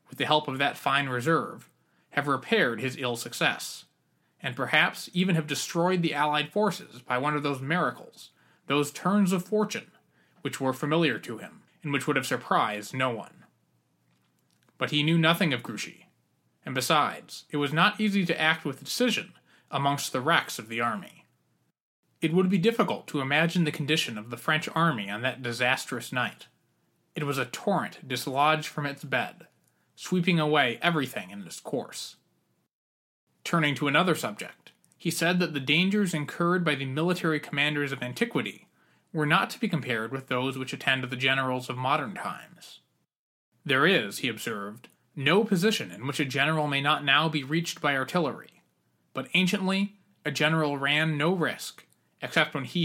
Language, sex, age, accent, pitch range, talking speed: English, male, 30-49, American, 130-170 Hz, 170 wpm